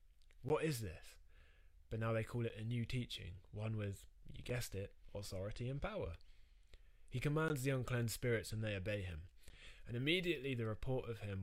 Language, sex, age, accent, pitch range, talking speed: English, male, 20-39, British, 85-115 Hz, 180 wpm